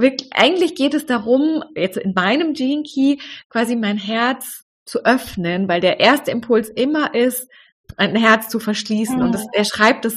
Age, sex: 20-39, female